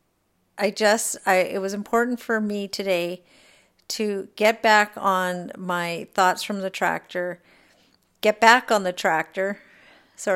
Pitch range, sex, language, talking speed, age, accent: 180-205 Hz, female, English, 140 wpm, 50-69, American